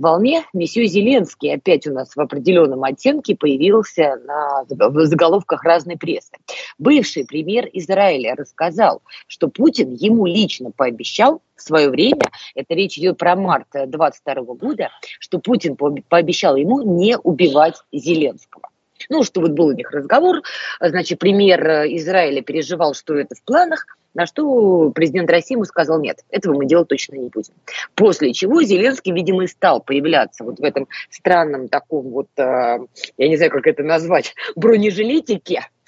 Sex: female